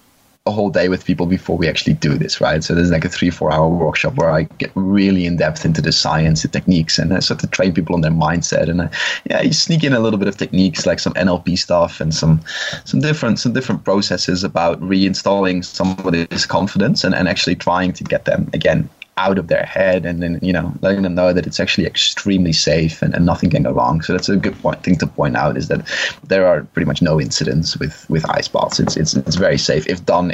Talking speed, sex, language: 240 wpm, male, English